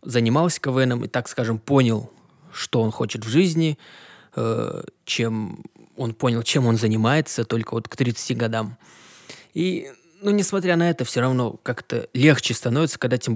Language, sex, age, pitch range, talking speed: Russian, male, 20-39, 115-135 Hz, 155 wpm